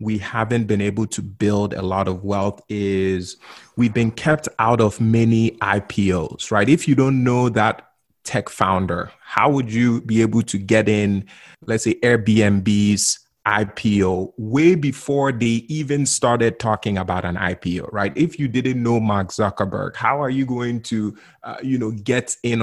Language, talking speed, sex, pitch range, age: English, 170 wpm, male, 100-125 Hz, 30-49